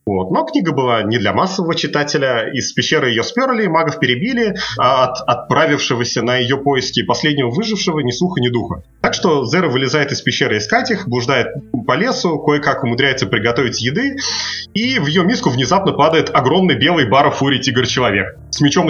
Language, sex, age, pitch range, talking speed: Russian, male, 30-49, 120-160 Hz, 165 wpm